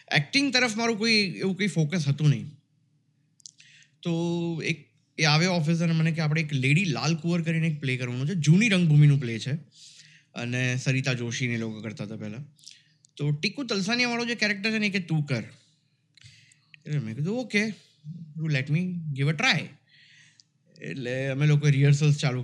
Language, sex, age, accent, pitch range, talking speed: Gujarati, male, 20-39, native, 135-160 Hz, 165 wpm